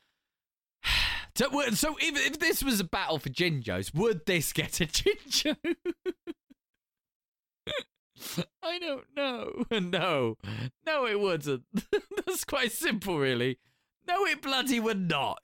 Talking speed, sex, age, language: 115 wpm, male, 20-39, English